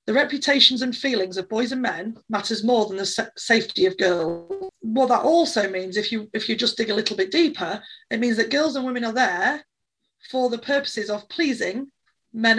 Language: English